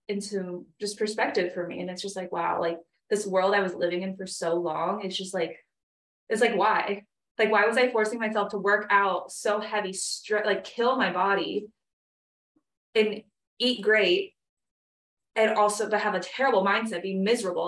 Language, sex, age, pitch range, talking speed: English, female, 20-39, 180-220 Hz, 185 wpm